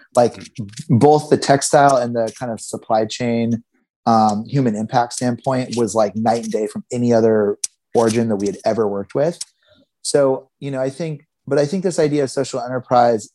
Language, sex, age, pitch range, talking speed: English, male, 30-49, 115-140 Hz, 190 wpm